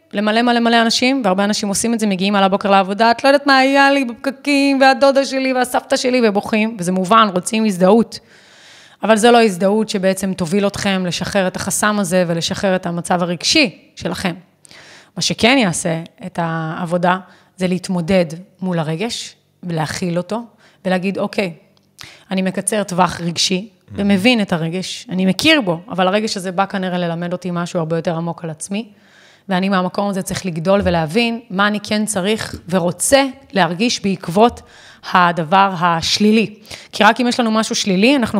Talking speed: 150 wpm